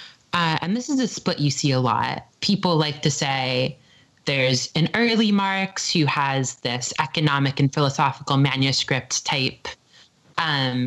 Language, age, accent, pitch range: English, 20-39, American, 140-175 Hz